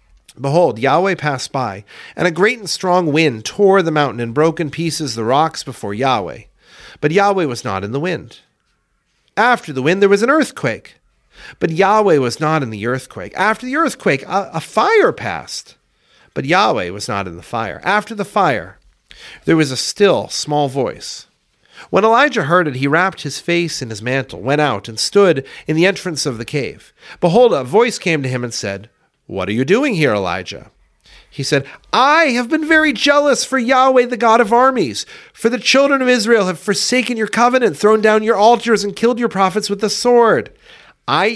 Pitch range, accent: 140-215 Hz, American